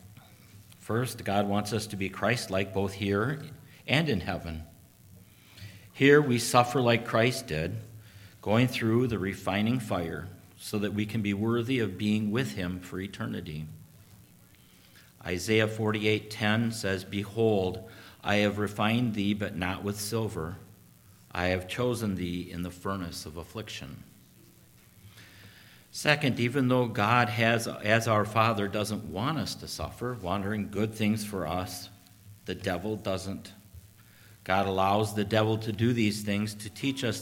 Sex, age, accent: male, 50-69, American